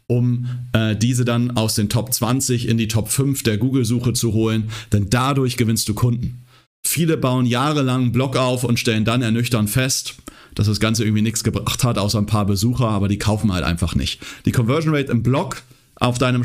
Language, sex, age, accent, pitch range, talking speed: German, male, 40-59, German, 110-140 Hz, 200 wpm